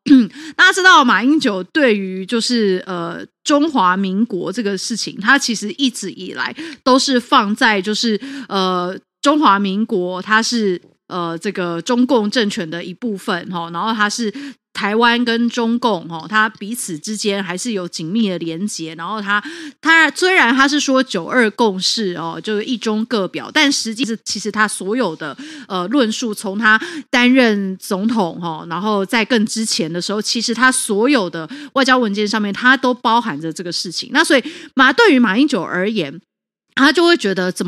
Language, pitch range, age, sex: Chinese, 195-270 Hz, 30-49, female